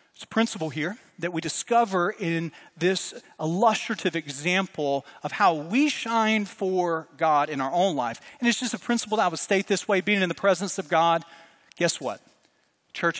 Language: English